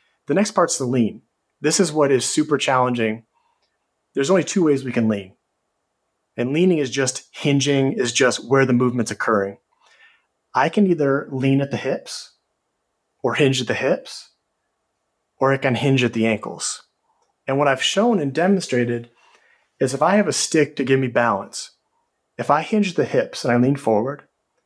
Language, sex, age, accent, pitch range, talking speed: English, male, 30-49, American, 125-165 Hz, 180 wpm